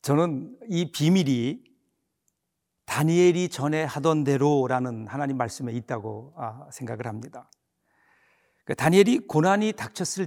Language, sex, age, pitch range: Korean, male, 50-69, 155-195 Hz